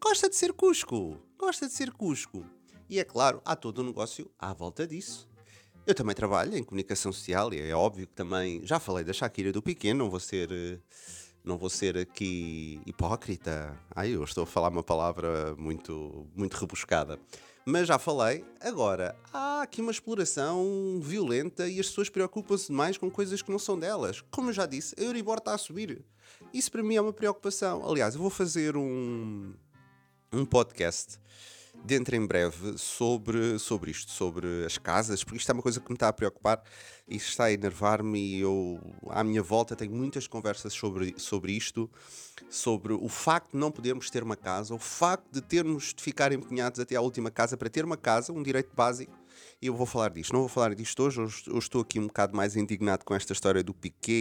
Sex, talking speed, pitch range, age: male, 195 wpm, 95-150 Hz, 30-49